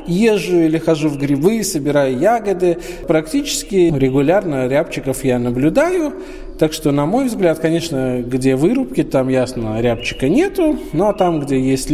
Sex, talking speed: male, 145 wpm